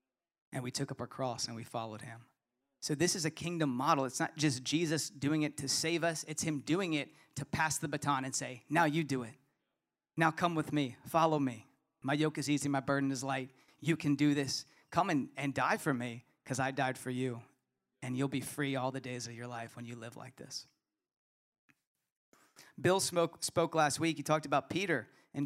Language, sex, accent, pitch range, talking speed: English, male, American, 140-165 Hz, 220 wpm